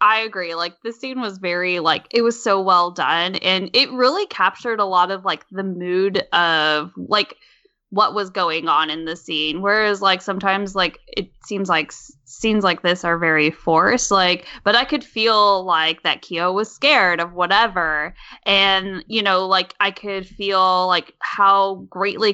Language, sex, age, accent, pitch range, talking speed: English, female, 10-29, American, 175-220 Hz, 180 wpm